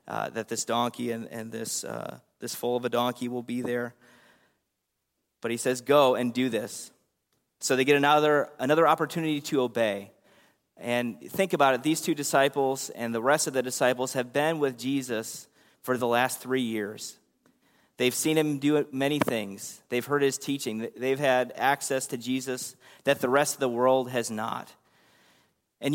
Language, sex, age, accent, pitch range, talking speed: English, male, 30-49, American, 120-145 Hz, 180 wpm